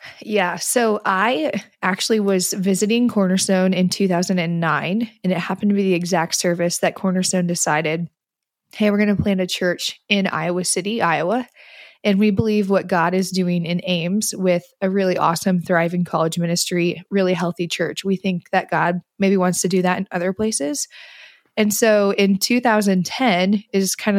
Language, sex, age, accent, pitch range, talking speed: English, female, 20-39, American, 180-210 Hz, 170 wpm